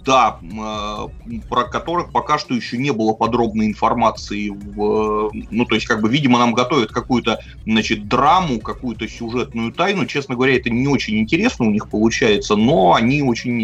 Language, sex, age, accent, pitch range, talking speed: Russian, male, 30-49, native, 110-145 Hz, 170 wpm